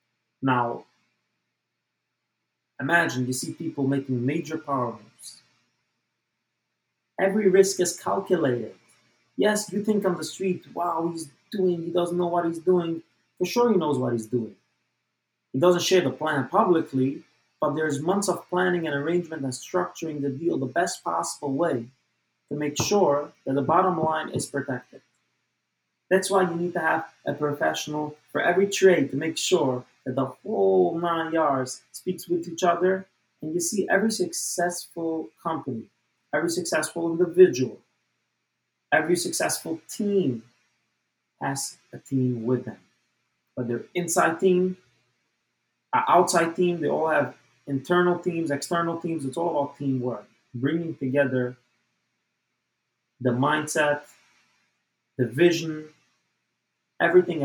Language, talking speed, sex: English, 135 wpm, male